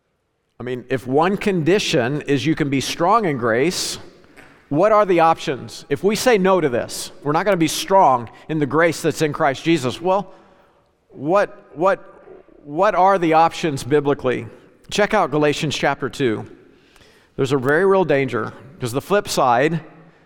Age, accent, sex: 50-69, American, male